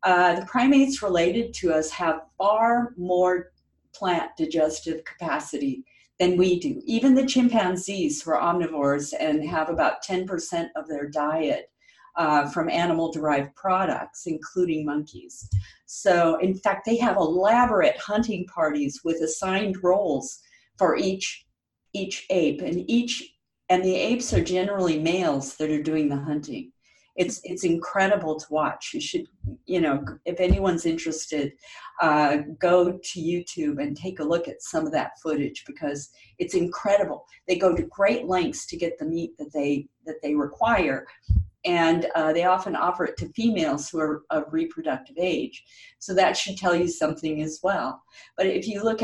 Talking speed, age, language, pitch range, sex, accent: 155 wpm, 50-69, English, 155-220 Hz, female, American